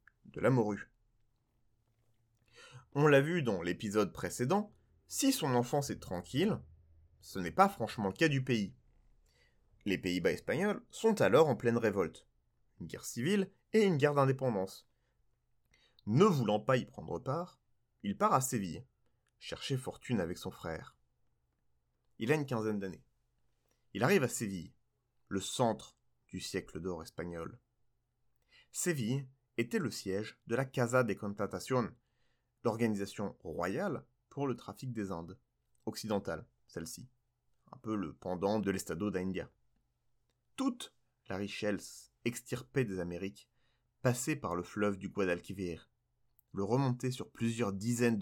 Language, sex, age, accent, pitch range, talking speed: French, male, 30-49, French, 100-130 Hz, 135 wpm